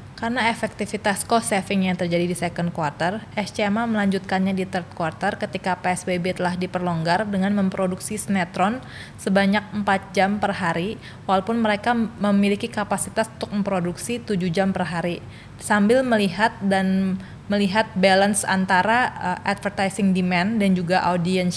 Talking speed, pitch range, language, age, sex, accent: 135 wpm, 180-215 Hz, Indonesian, 20-39, female, native